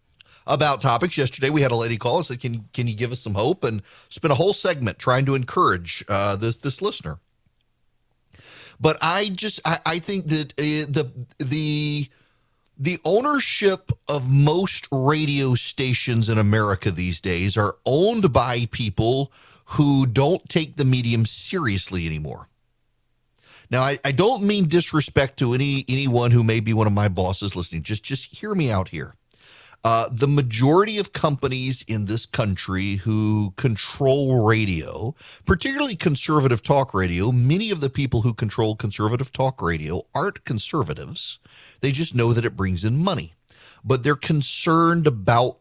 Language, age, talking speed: English, 40-59, 160 wpm